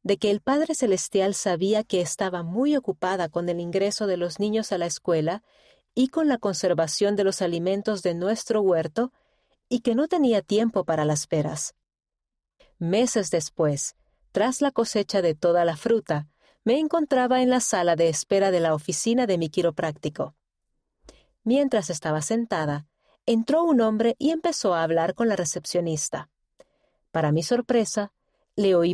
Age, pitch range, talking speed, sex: 40-59, 170-235 Hz, 160 wpm, female